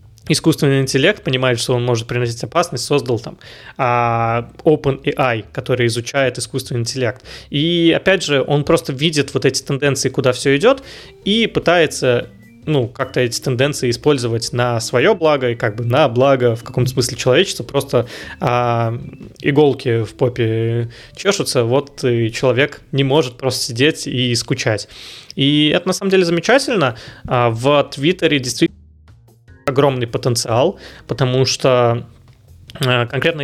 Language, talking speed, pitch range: Russian, 140 wpm, 120-145 Hz